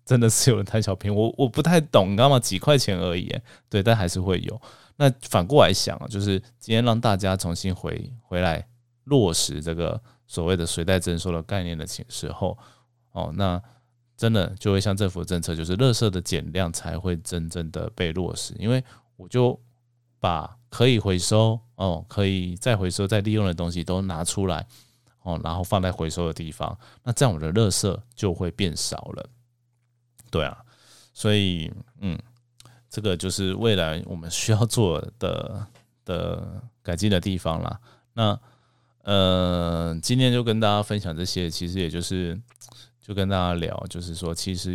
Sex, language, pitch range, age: male, Chinese, 90-120 Hz, 20-39